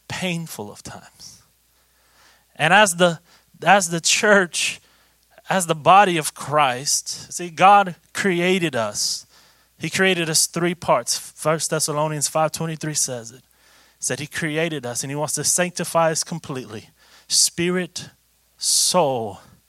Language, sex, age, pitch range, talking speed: English, male, 30-49, 140-185 Hz, 130 wpm